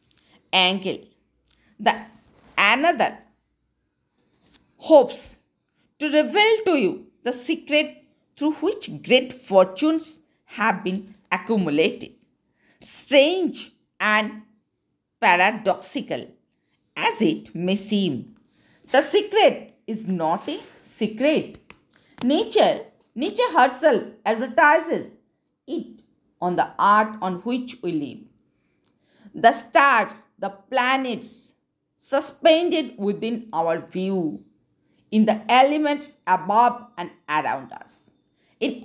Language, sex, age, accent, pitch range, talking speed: Hindi, female, 50-69, native, 215-305 Hz, 90 wpm